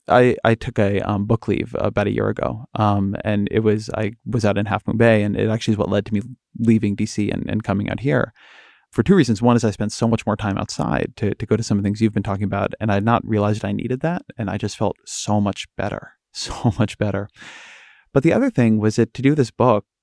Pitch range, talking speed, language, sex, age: 105-120 Hz, 265 wpm, English, male, 30-49